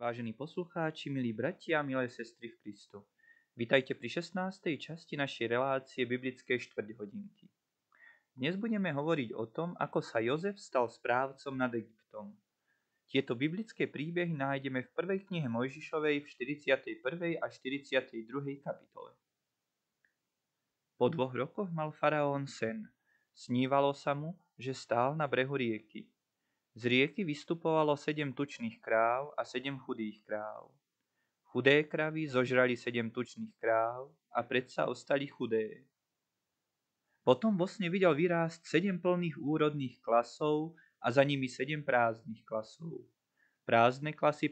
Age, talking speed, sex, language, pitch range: 20-39, 125 wpm, male, Slovak, 125-160 Hz